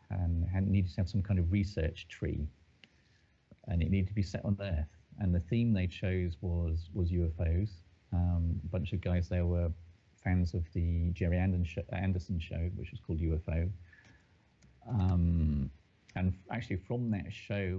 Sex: male